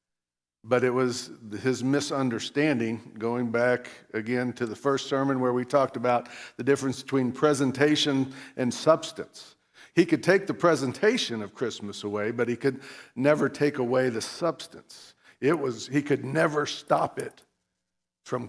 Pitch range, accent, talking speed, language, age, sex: 120-155 Hz, American, 150 wpm, English, 50-69, male